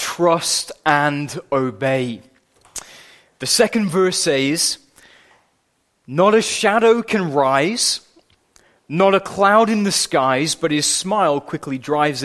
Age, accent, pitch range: 20-39, British, 130-185 Hz